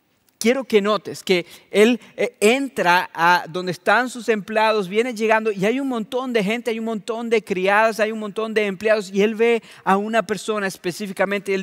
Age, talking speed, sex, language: 40-59, 195 wpm, male, English